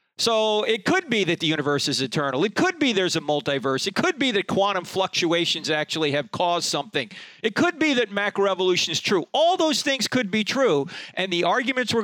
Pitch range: 170-230 Hz